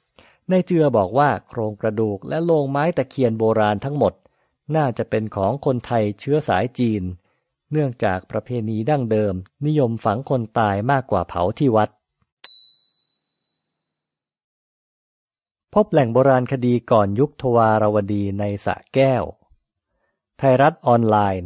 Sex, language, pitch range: male, English, 105-140 Hz